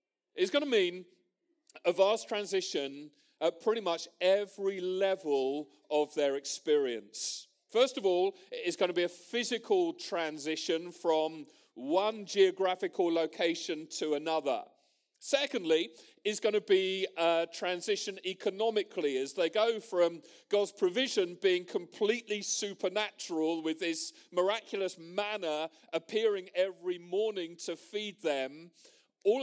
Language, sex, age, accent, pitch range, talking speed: English, male, 40-59, British, 165-235 Hz, 120 wpm